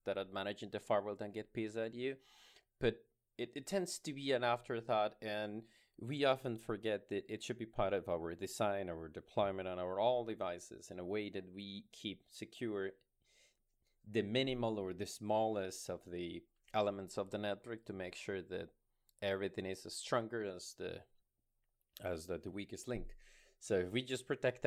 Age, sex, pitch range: 30-49, male, 95-125 Hz